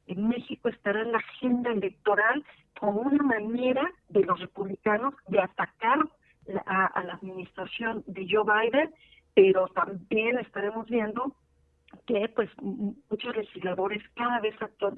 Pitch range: 200-255 Hz